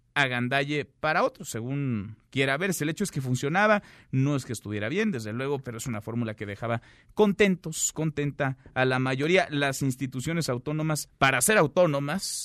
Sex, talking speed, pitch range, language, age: male, 175 wpm, 120-170 Hz, Spanish, 40-59